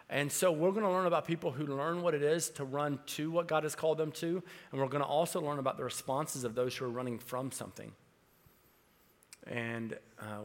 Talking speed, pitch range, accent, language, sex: 230 wpm, 150-205 Hz, American, English, male